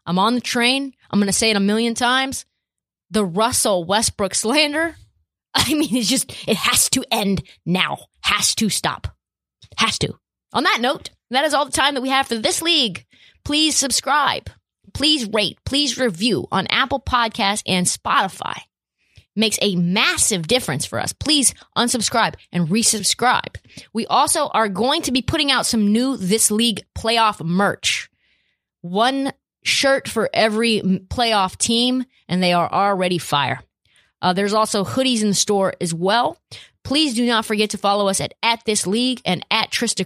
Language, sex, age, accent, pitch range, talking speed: English, female, 20-39, American, 195-255 Hz, 170 wpm